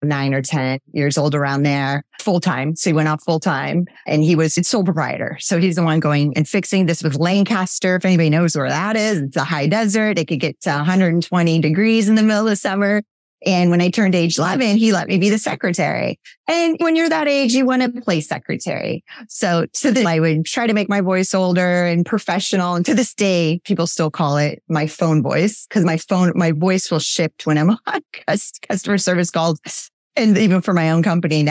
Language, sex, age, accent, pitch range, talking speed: English, female, 30-49, American, 155-205 Hz, 225 wpm